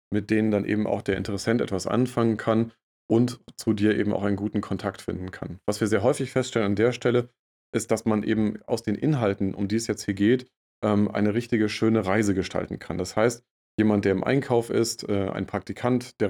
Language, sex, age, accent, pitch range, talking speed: German, male, 30-49, German, 100-115 Hz, 210 wpm